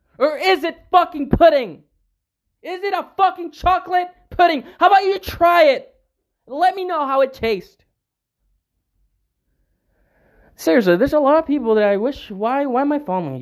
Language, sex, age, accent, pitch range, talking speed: English, male, 20-39, American, 235-300 Hz, 160 wpm